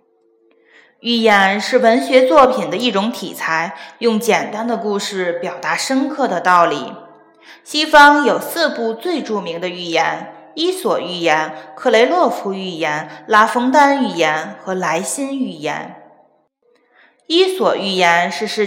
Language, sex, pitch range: Chinese, female, 185-255 Hz